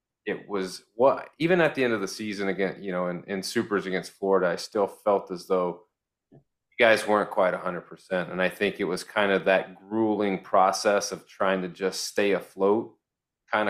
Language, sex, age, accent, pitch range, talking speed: English, male, 30-49, American, 95-110 Hz, 210 wpm